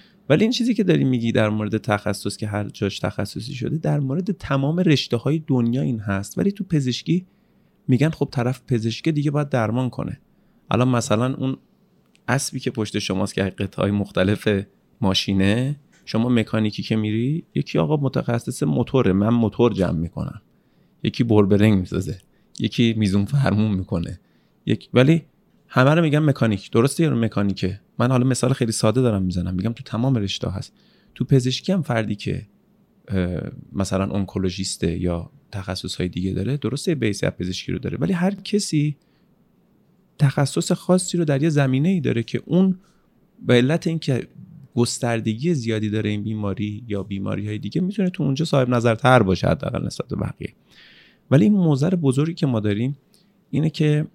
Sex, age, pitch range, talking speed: male, 30-49, 105-155 Hz, 160 wpm